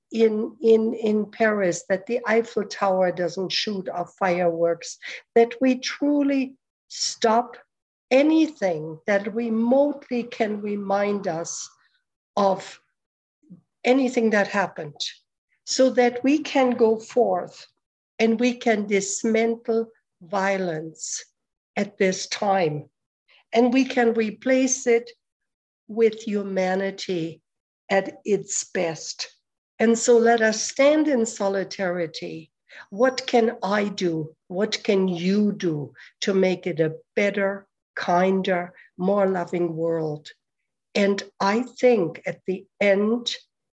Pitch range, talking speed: 180-235 Hz, 110 wpm